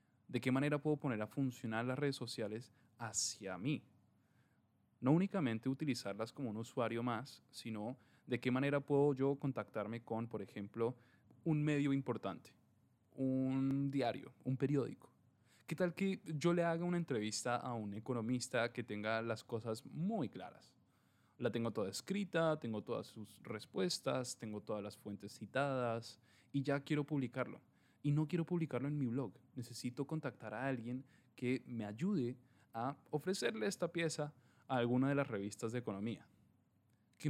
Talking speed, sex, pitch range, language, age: 155 wpm, male, 110-140 Hz, Spanish, 10-29